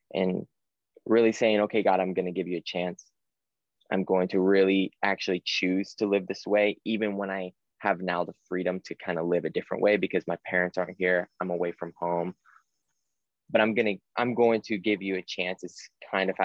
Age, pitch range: 20-39, 90-105 Hz